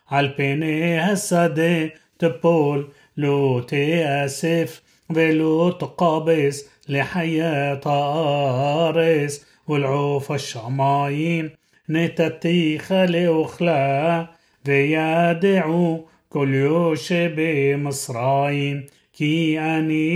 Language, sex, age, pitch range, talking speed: Hebrew, male, 30-49, 140-165 Hz, 65 wpm